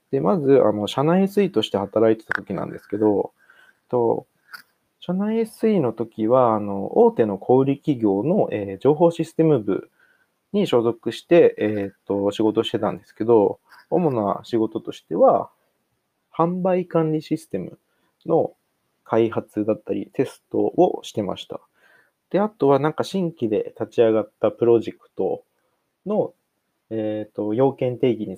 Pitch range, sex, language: 110-165 Hz, male, Japanese